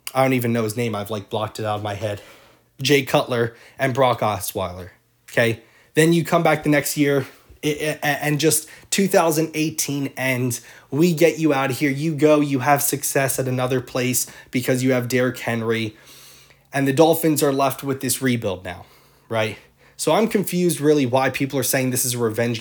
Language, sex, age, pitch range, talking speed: English, male, 20-39, 120-150 Hz, 190 wpm